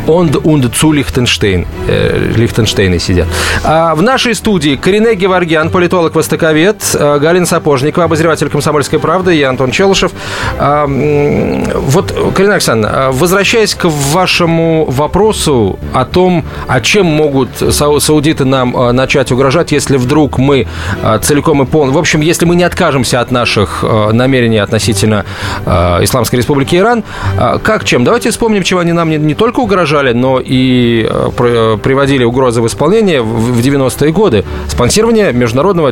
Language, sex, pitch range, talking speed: Russian, male, 120-165 Hz, 125 wpm